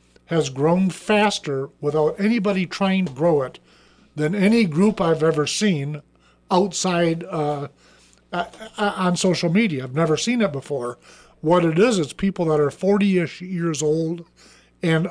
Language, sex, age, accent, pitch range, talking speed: English, male, 50-69, American, 150-205 Hz, 145 wpm